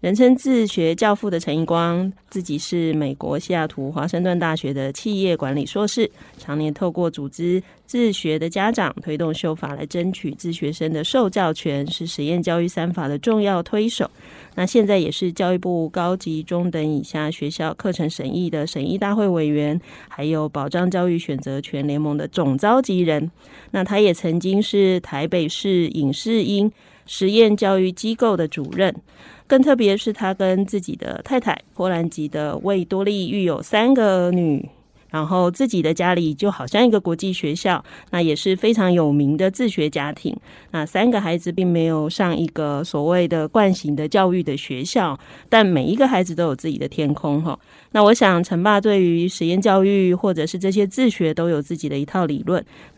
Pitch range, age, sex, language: 155-195 Hz, 30-49, female, Chinese